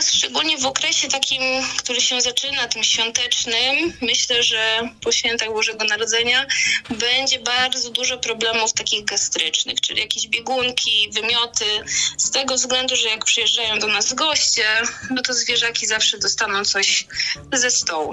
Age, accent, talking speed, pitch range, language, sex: 20-39, native, 140 wpm, 200-245 Hz, Polish, female